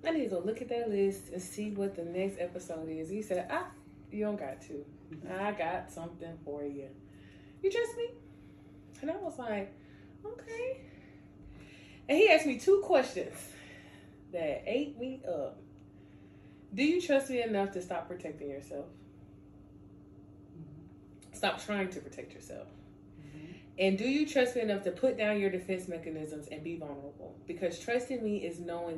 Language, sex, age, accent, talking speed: English, female, 20-39, American, 165 wpm